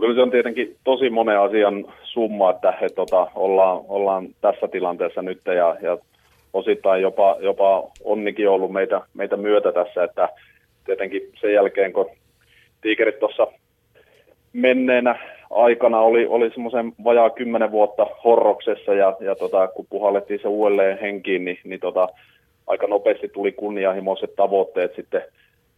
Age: 30-49